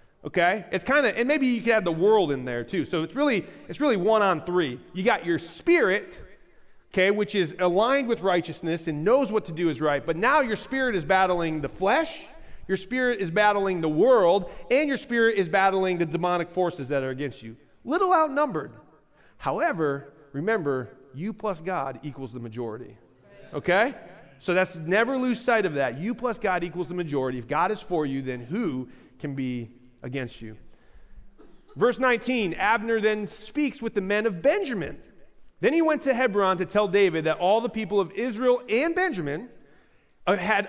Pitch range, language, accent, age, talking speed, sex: 150-220 Hz, English, American, 30-49, 185 wpm, male